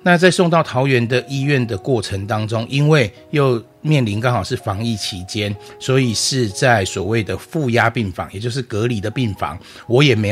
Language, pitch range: Chinese, 95-130 Hz